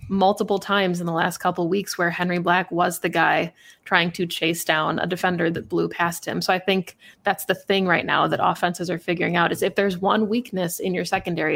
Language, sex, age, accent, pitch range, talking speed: English, female, 20-39, American, 170-190 Hz, 235 wpm